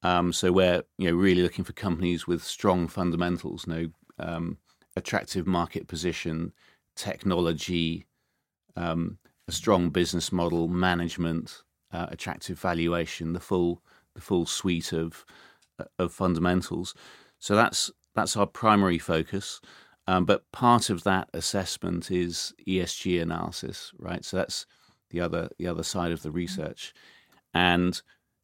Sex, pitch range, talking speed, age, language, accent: male, 85-95 Hz, 130 wpm, 40-59, English, British